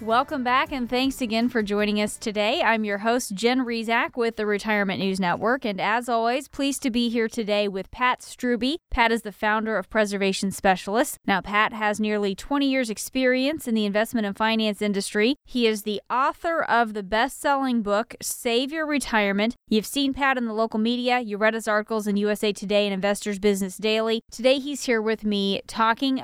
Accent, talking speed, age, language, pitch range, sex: American, 195 wpm, 20-39, English, 200-240 Hz, female